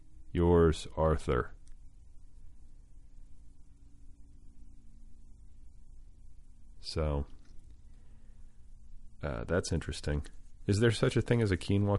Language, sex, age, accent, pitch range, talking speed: English, male, 30-49, American, 70-95 Hz, 70 wpm